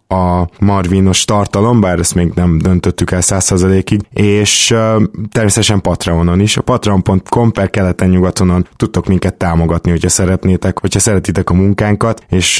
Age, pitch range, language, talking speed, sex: 20-39, 90-105 Hz, Hungarian, 145 wpm, male